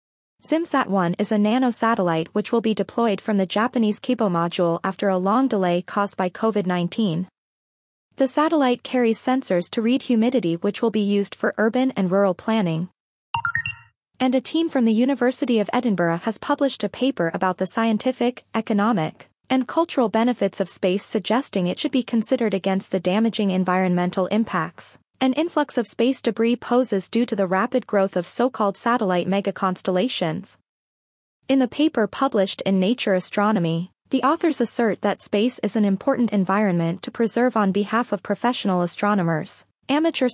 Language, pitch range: English, 190-245 Hz